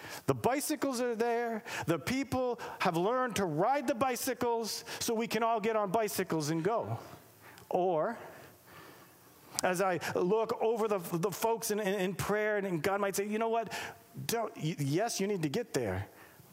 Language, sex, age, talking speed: English, male, 40-59, 165 wpm